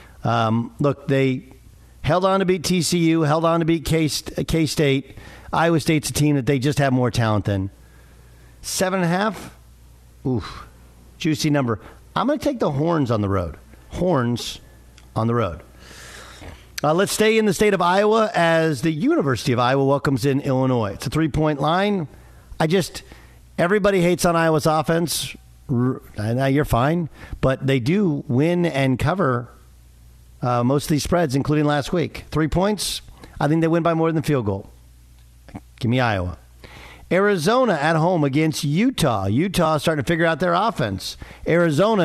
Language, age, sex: English, 50-69, male